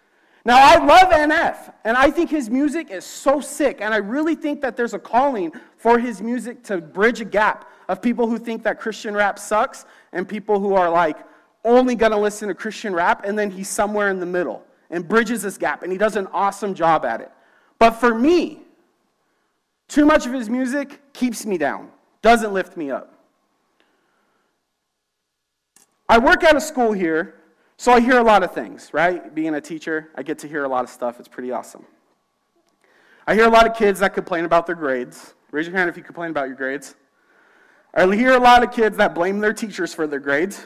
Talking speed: 210 wpm